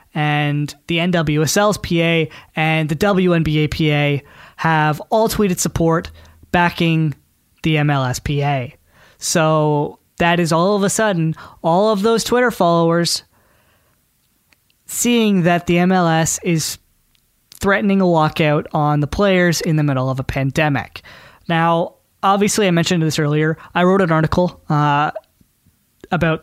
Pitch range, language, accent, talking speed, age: 145-180 Hz, English, American, 130 wpm, 20-39